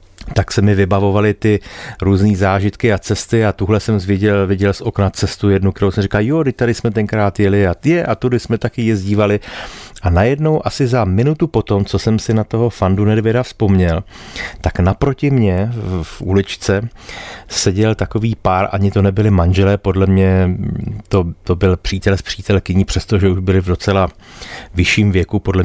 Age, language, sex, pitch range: 40-59, Czech, male, 95-110 Hz